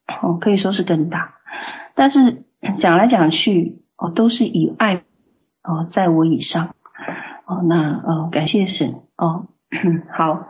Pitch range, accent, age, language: 170-240 Hz, native, 40-59, Chinese